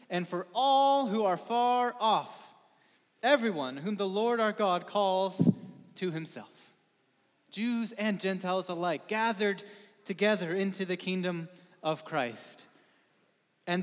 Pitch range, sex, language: 185-235 Hz, male, English